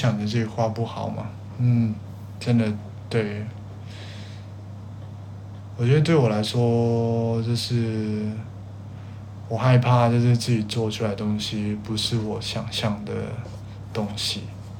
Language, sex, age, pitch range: Chinese, male, 20-39, 105-115 Hz